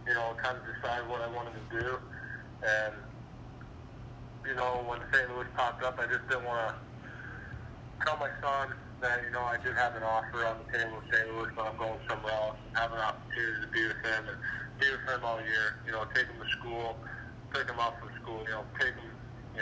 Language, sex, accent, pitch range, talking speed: English, male, American, 110-125 Hz, 230 wpm